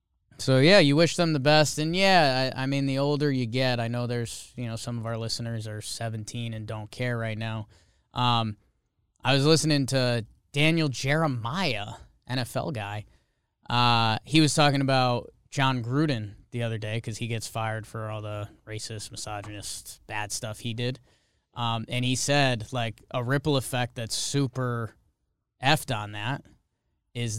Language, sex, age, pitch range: English, male, 20-39, 115-140 Hz